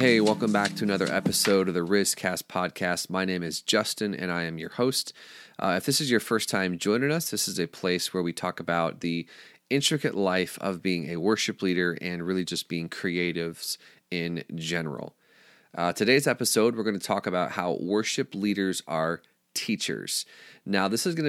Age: 30-49